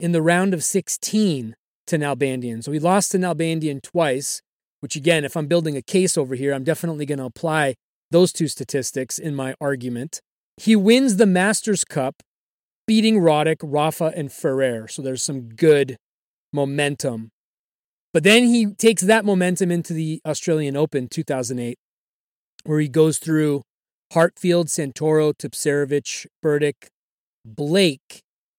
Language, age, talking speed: English, 30-49, 145 wpm